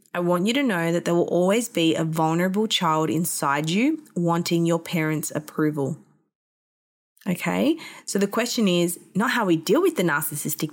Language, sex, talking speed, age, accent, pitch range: English, female, 175 wpm, 20-39, Australian, 165-205 Hz